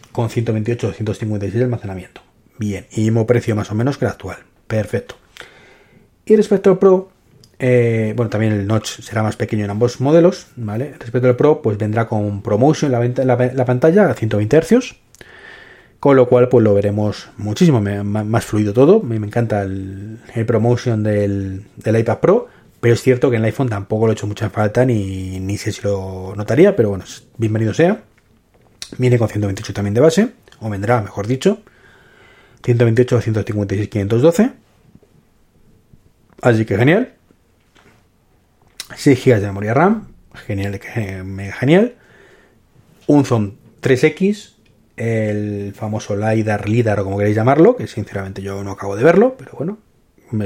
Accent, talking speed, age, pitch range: Spanish, 160 wpm, 30-49, 105-130 Hz